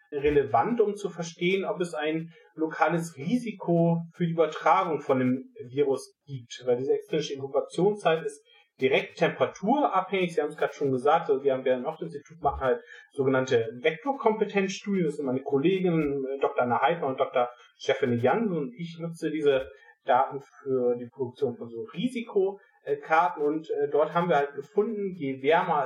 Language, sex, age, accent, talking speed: German, male, 40-59, German, 160 wpm